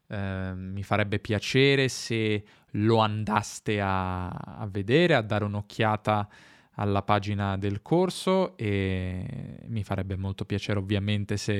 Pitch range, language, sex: 105-135 Hz, Italian, male